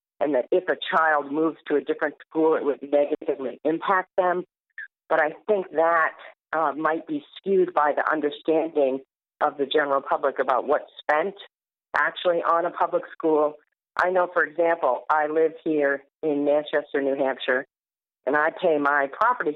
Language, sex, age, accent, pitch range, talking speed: English, female, 50-69, American, 145-180 Hz, 165 wpm